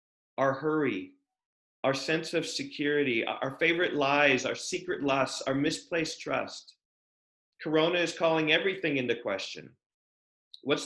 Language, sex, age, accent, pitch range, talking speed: English, male, 40-59, American, 120-155 Hz, 120 wpm